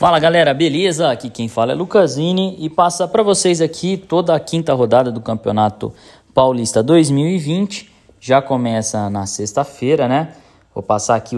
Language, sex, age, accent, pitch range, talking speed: Portuguese, male, 20-39, Brazilian, 115-155 Hz, 155 wpm